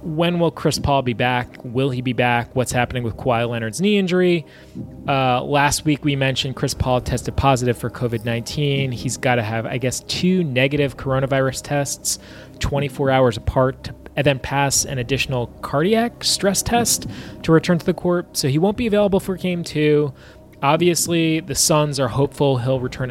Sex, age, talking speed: male, 20-39, 180 wpm